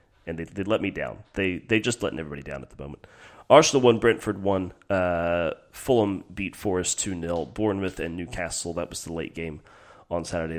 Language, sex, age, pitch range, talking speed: English, male, 30-49, 80-100 Hz, 195 wpm